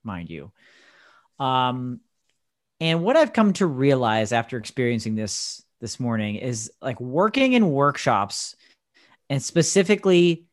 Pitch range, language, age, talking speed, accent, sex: 120-155 Hz, English, 30-49, 120 wpm, American, male